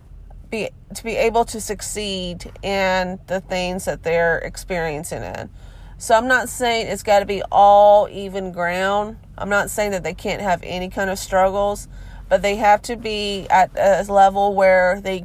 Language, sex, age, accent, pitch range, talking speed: English, female, 30-49, American, 180-205 Hz, 175 wpm